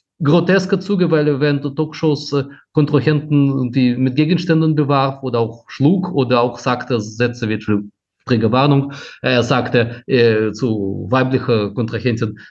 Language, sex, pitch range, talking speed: German, male, 120-155 Hz, 125 wpm